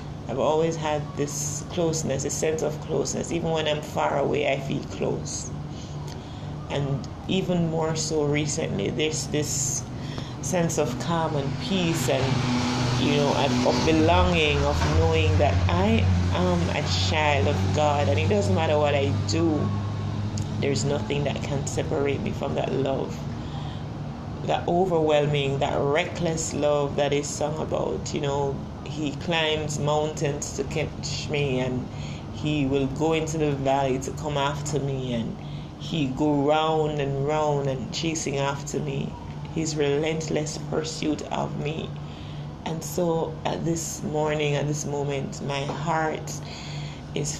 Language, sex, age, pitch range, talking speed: English, male, 30-49, 125-155 Hz, 145 wpm